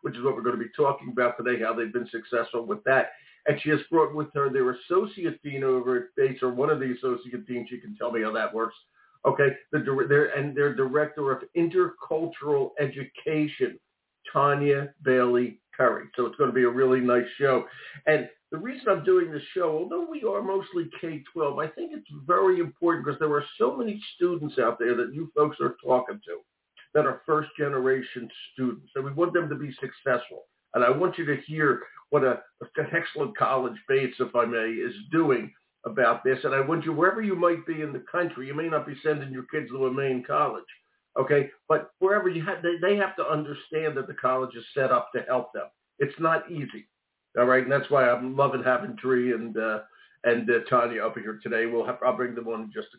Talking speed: 215 wpm